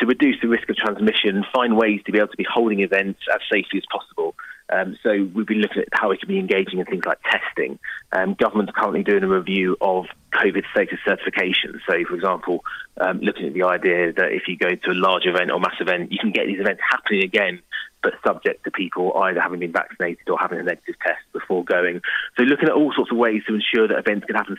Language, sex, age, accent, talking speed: English, male, 30-49, British, 240 wpm